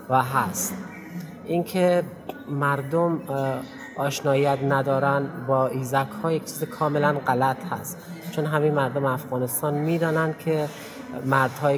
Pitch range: 130-150 Hz